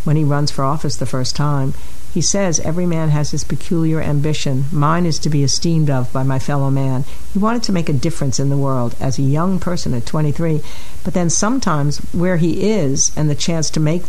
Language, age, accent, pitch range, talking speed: English, 60-79, American, 135-160 Hz, 220 wpm